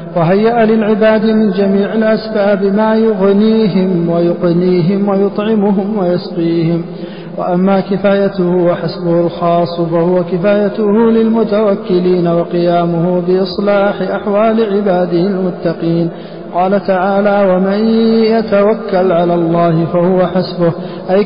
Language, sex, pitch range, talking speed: Arabic, male, 175-215 Hz, 90 wpm